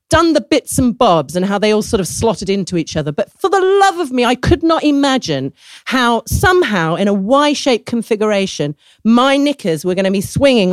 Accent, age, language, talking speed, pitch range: British, 40-59, English, 215 wpm, 180-290 Hz